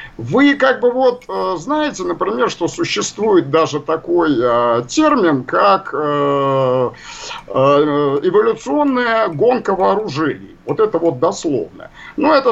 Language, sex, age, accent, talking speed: Russian, male, 50-69, native, 100 wpm